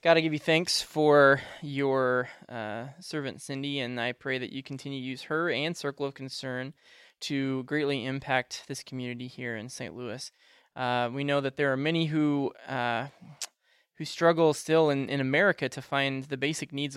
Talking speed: 180 wpm